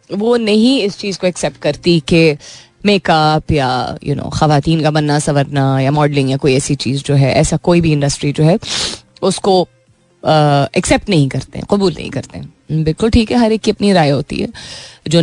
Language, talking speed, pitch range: Hindi, 195 wpm, 155-210 Hz